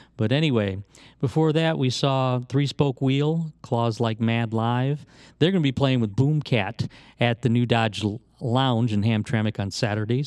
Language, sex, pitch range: English, male, 115-140 Hz